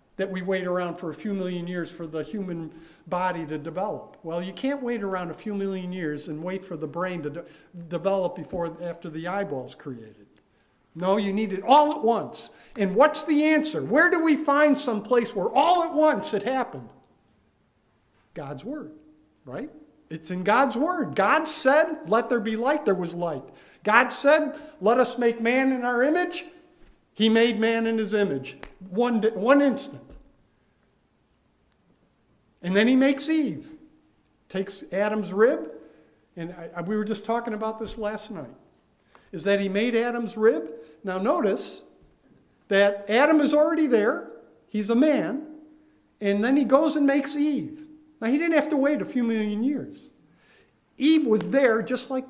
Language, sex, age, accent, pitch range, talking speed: English, male, 50-69, American, 185-280 Hz, 170 wpm